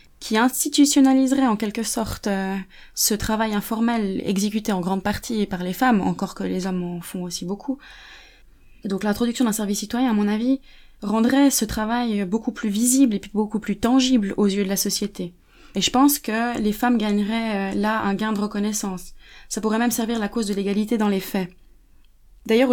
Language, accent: French, French